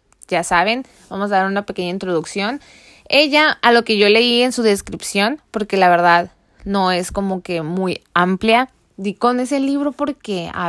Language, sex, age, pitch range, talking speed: Spanish, female, 20-39, 190-235 Hz, 180 wpm